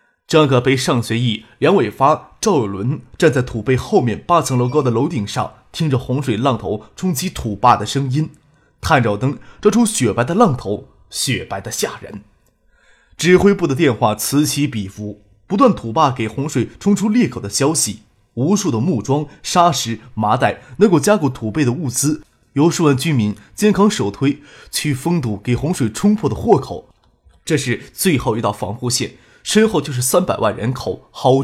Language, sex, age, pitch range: Chinese, male, 20-39, 120-160 Hz